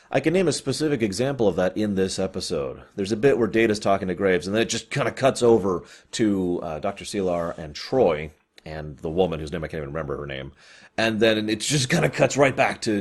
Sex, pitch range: male, 90-120 Hz